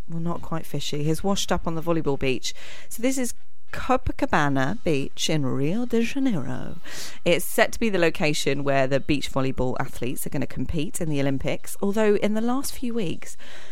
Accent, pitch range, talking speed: British, 140-190 Hz, 195 wpm